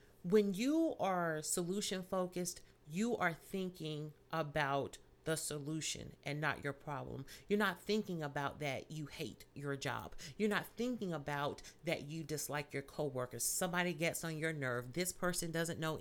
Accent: American